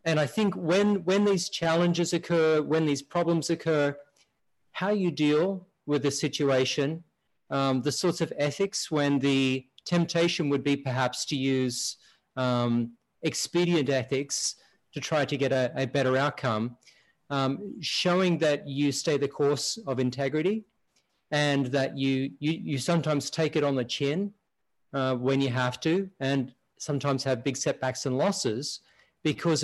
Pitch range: 135-165 Hz